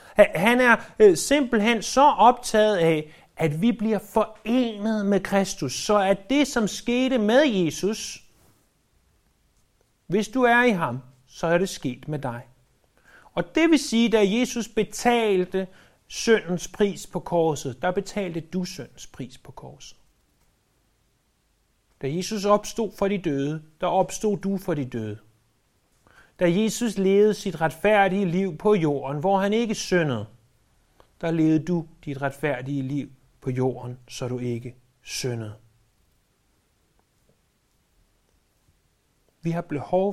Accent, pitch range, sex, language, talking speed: native, 135-210 Hz, male, Danish, 130 wpm